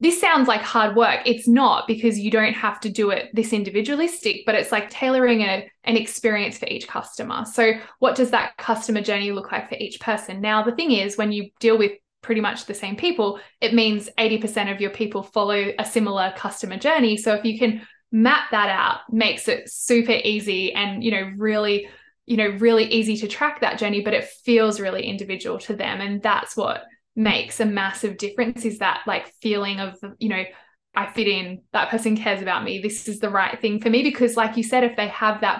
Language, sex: English, female